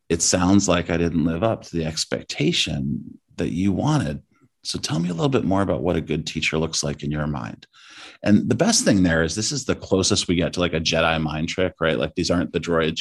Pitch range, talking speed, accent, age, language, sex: 80-95 Hz, 250 wpm, American, 30-49, English, male